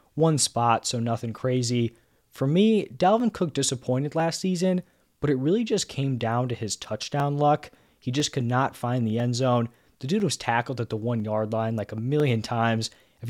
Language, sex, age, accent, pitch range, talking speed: English, male, 20-39, American, 115-140 Hz, 200 wpm